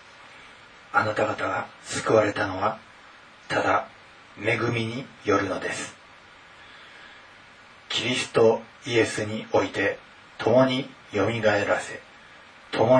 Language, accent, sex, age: Japanese, native, male, 30-49